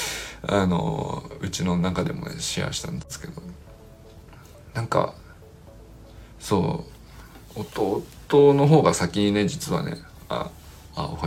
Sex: male